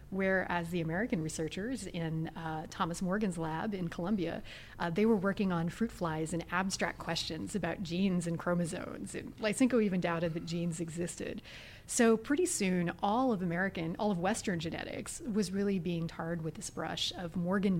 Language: English